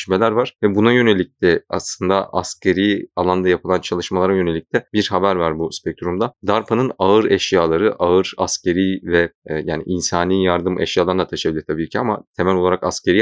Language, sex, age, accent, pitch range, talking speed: Turkish, male, 30-49, native, 85-105 Hz, 160 wpm